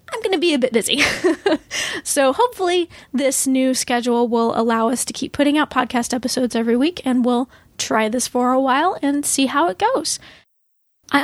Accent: American